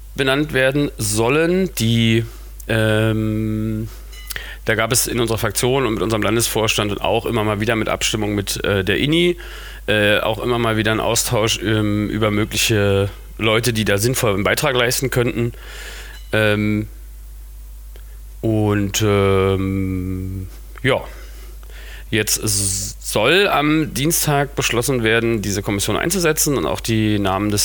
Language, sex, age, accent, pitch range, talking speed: German, male, 40-59, German, 100-115 Hz, 135 wpm